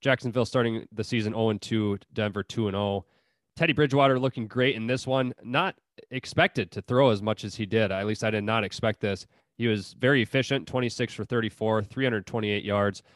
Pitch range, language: 100-125 Hz, English